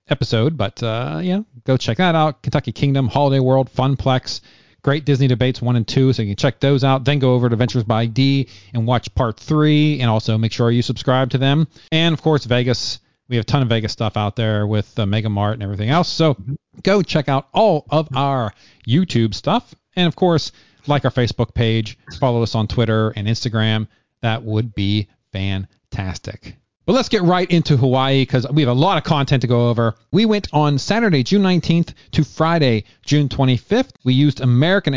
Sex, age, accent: male, 40-59, American